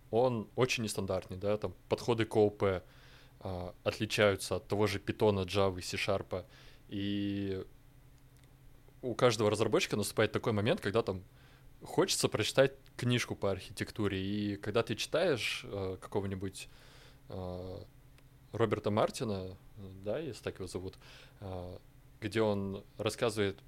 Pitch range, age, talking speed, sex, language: 100-130 Hz, 20-39, 125 wpm, male, Russian